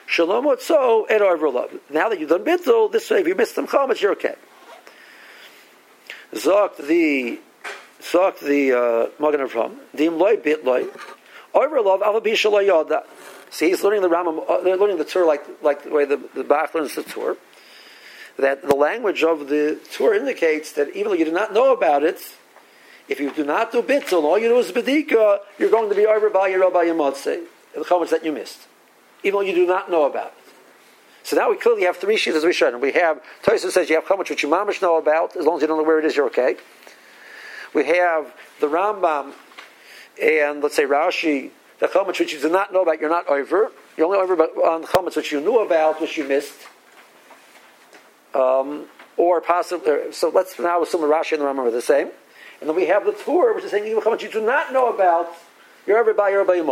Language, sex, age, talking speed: English, male, 50-69, 215 wpm